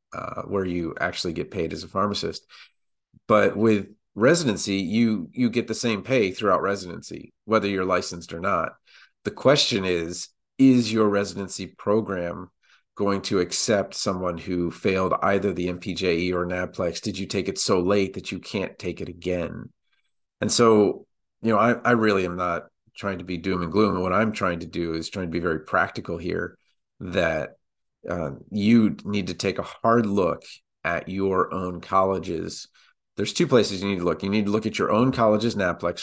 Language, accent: English, American